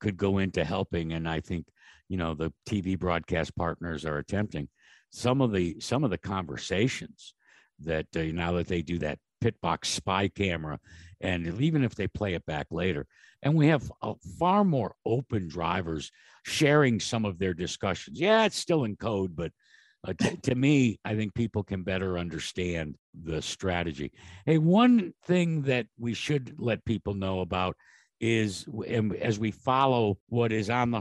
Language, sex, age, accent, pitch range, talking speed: English, male, 60-79, American, 90-115 Hz, 170 wpm